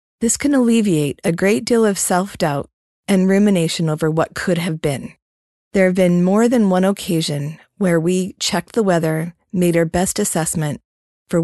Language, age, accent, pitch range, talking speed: English, 30-49, American, 170-220 Hz, 170 wpm